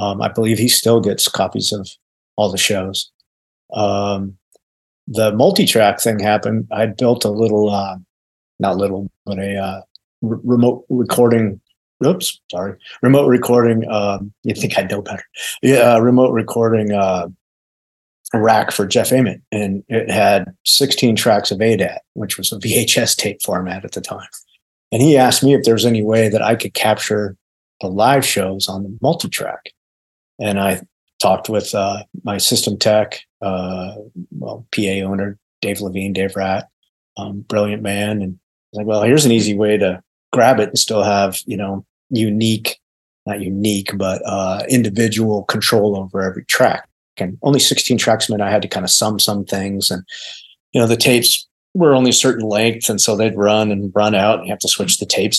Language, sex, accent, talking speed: English, male, American, 180 wpm